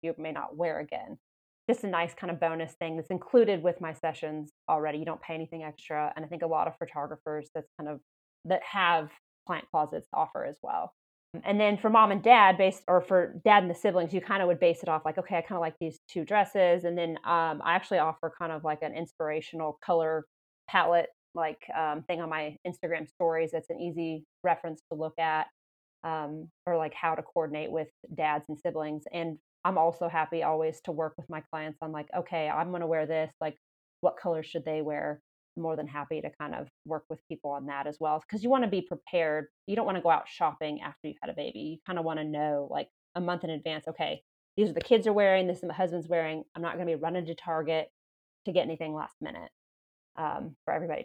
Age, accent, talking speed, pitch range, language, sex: 30-49, American, 235 wpm, 155-180 Hz, English, female